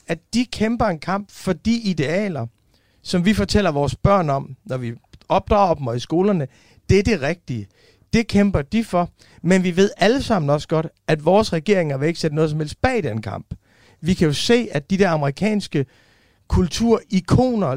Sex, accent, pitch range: male, native, 150-200 Hz